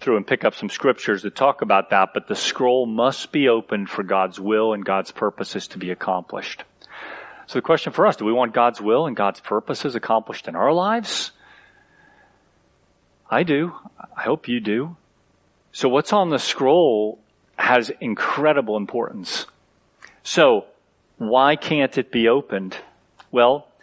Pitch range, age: 105-150 Hz, 40-59